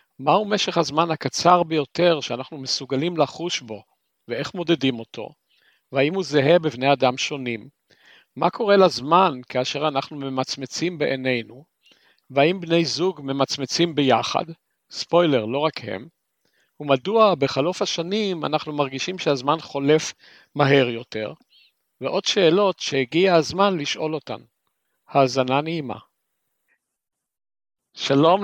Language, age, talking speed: Hebrew, 50-69, 110 wpm